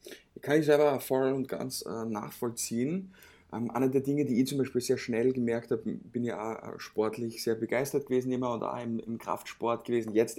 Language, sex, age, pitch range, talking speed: German, male, 20-39, 115-140 Hz, 190 wpm